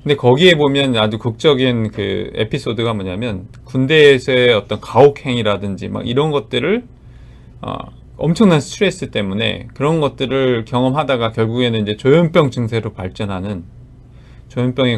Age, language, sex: 40-59, Korean, male